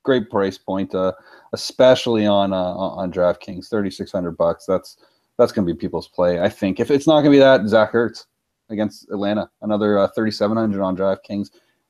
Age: 30-49